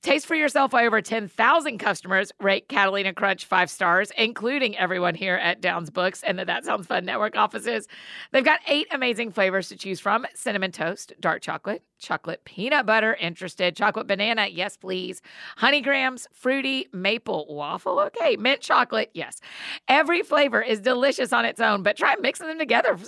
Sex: female